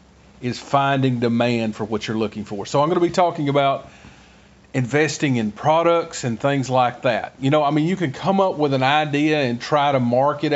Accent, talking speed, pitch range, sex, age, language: American, 205 wpm, 135-185 Hz, male, 40-59, English